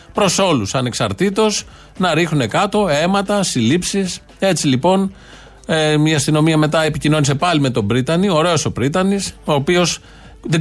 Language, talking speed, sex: Greek, 125 wpm, male